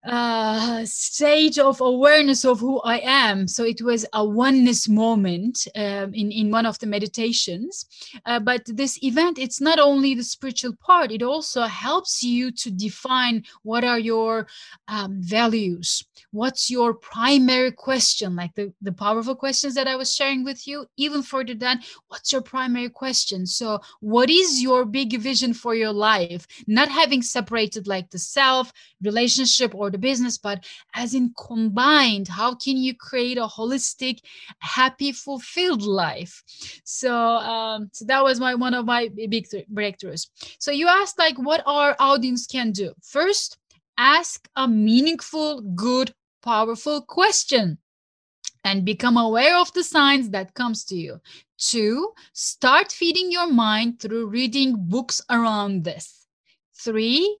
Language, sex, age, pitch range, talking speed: English, female, 30-49, 220-270 Hz, 150 wpm